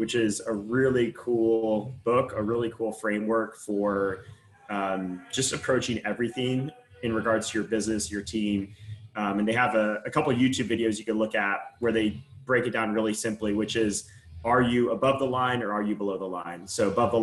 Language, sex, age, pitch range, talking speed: English, male, 30-49, 100-115 Hz, 205 wpm